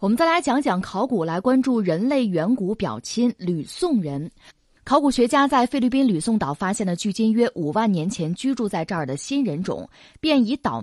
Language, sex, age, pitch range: Chinese, female, 20-39, 175-255 Hz